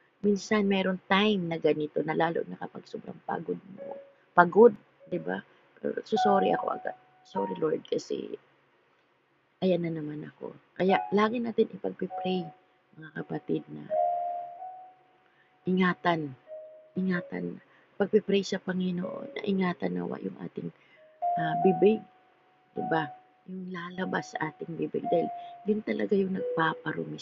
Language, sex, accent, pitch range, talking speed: Filipino, female, native, 150-220 Hz, 125 wpm